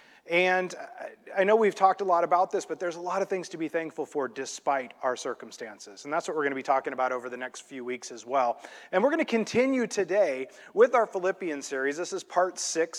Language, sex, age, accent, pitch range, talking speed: English, male, 30-49, American, 140-200 Hz, 240 wpm